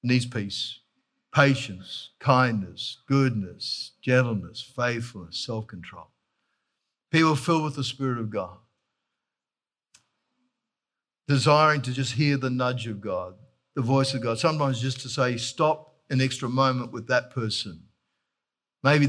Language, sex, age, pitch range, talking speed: English, male, 50-69, 125-145 Hz, 125 wpm